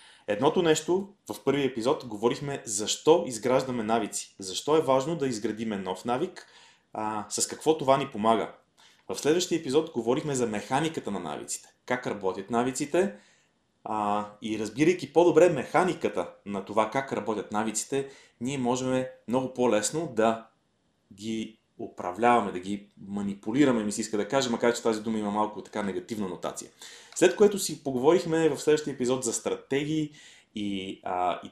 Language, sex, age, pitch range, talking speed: Bulgarian, male, 30-49, 105-140 Hz, 150 wpm